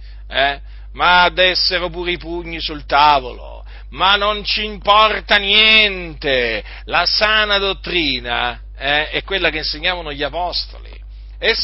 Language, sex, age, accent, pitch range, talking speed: Italian, male, 50-69, native, 135-185 Hz, 120 wpm